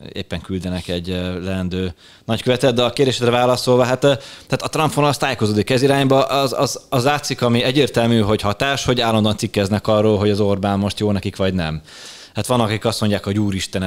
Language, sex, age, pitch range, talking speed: Hungarian, male, 20-39, 95-115 Hz, 185 wpm